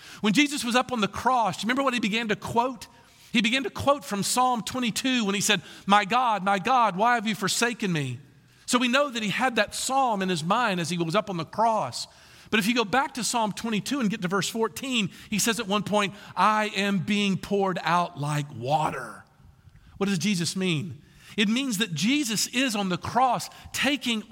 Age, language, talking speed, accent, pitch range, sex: 50-69, English, 220 wpm, American, 195-270 Hz, male